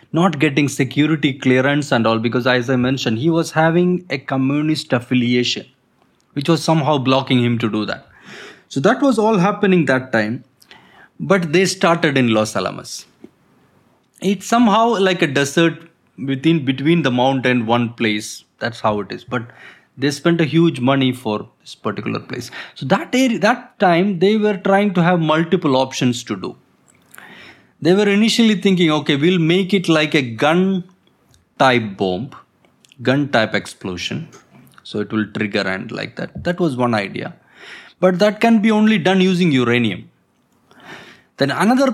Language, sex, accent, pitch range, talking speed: English, male, Indian, 125-185 Hz, 160 wpm